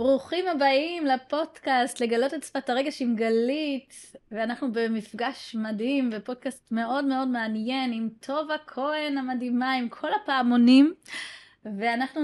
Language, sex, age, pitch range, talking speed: Hebrew, female, 20-39, 235-300 Hz, 120 wpm